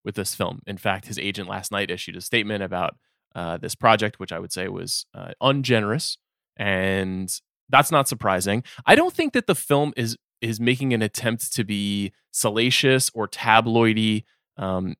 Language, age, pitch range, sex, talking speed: English, 20-39, 100-135 Hz, male, 175 wpm